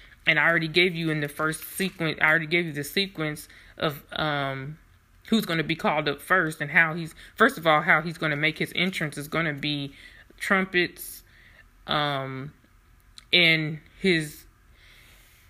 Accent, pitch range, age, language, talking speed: American, 145-175 Hz, 20-39, English, 175 wpm